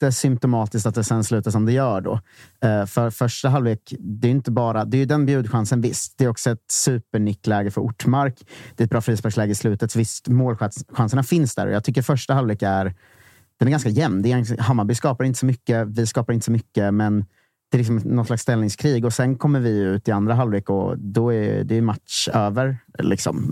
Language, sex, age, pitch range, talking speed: Swedish, male, 30-49, 105-125 Hz, 215 wpm